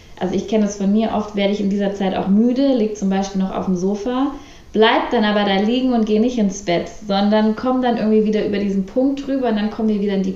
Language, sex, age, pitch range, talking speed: German, female, 20-39, 190-220 Hz, 270 wpm